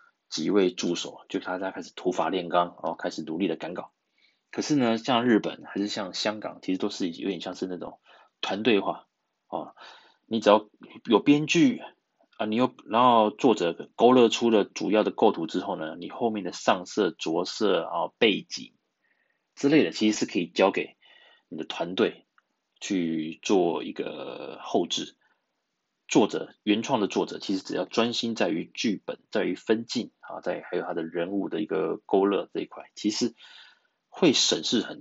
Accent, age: native, 20-39